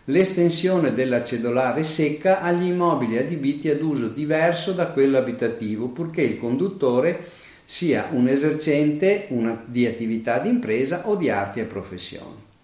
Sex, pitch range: male, 120-170 Hz